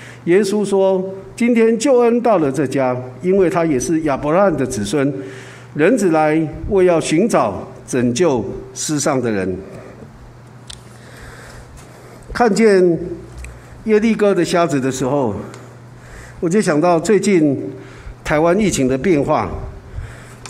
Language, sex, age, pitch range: Chinese, male, 50-69, 130-195 Hz